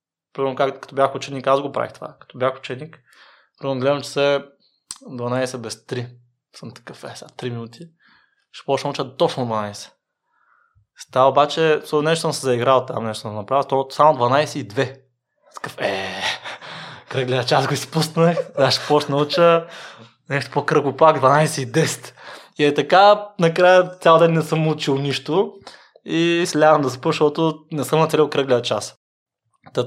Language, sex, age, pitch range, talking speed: Bulgarian, male, 20-39, 125-160 Hz, 165 wpm